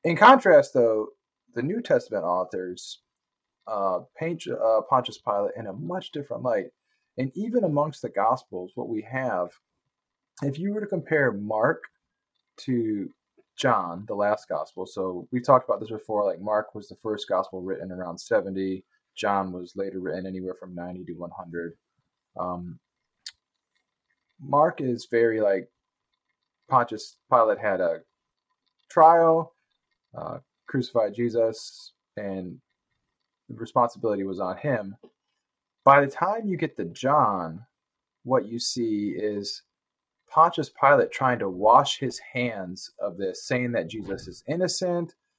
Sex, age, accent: male, 20-39, American